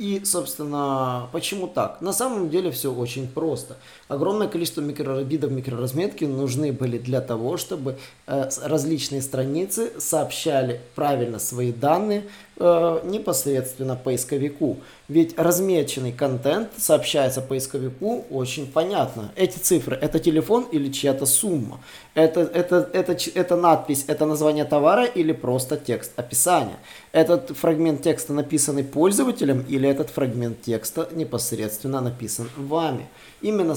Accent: native